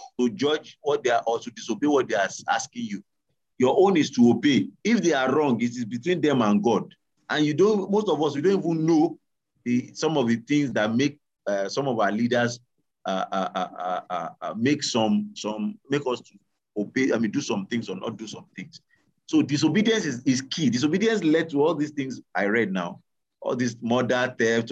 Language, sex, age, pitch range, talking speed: English, male, 40-59, 105-145 Hz, 215 wpm